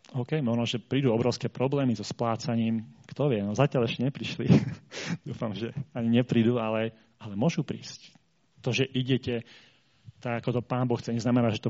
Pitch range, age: 115-140 Hz, 30-49